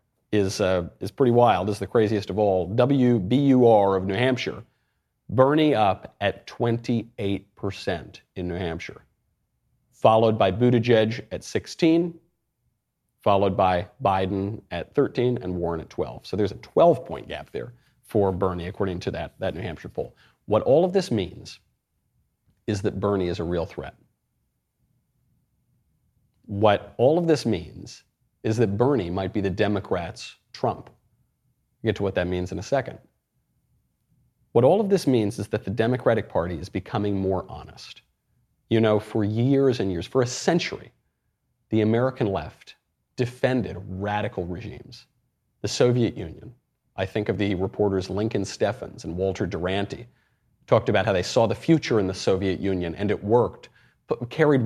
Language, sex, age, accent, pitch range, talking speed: English, male, 40-59, American, 95-125 Hz, 160 wpm